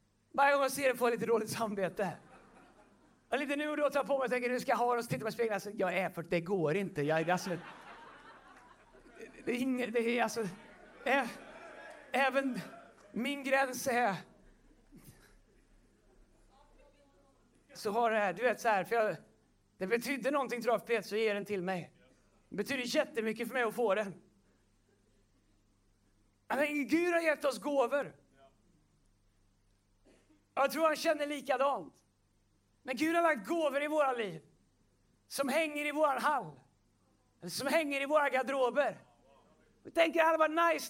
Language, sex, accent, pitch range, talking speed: Swedish, male, native, 180-290 Hz, 165 wpm